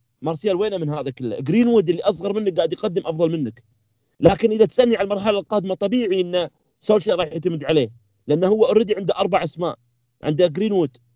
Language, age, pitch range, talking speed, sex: Arabic, 40-59, 140-210 Hz, 170 wpm, male